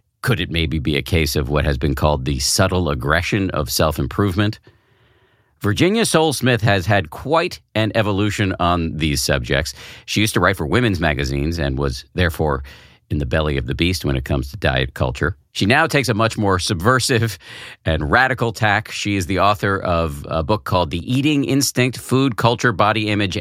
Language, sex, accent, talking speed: English, male, American, 190 wpm